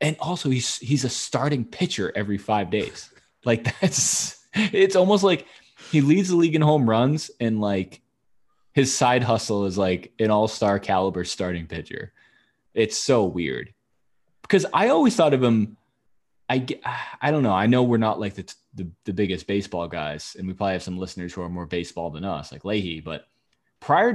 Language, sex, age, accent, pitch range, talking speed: English, male, 20-39, American, 95-125 Hz, 185 wpm